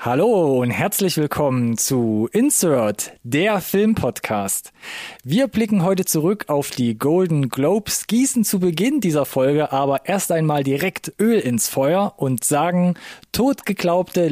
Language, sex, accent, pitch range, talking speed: German, male, German, 135-195 Hz, 130 wpm